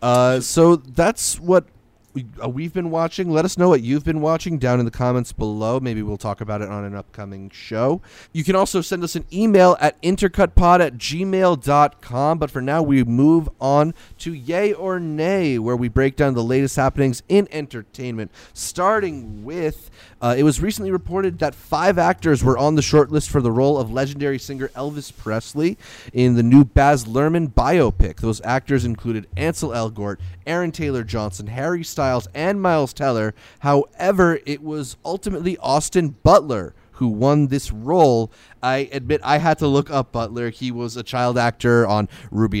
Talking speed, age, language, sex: 175 wpm, 30-49, English, male